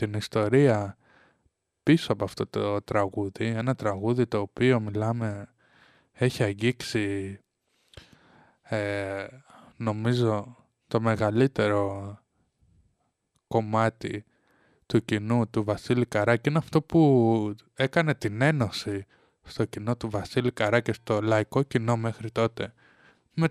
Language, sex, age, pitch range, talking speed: Greek, male, 20-39, 105-135 Hz, 105 wpm